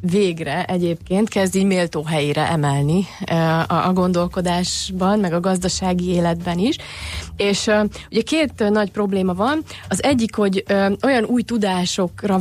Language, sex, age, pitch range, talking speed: Hungarian, female, 30-49, 180-215 Hz, 120 wpm